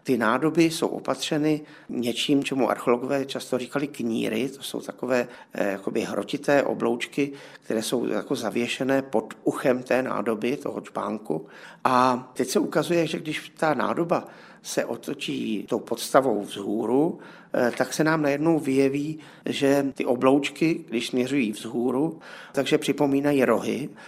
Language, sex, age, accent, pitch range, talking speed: Czech, male, 50-69, native, 115-140 Hz, 125 wpm